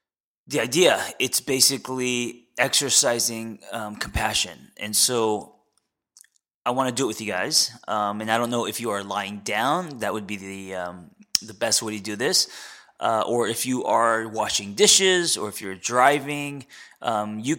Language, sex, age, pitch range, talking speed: English, male, 20-39, 100-125 Hz, 175 wpm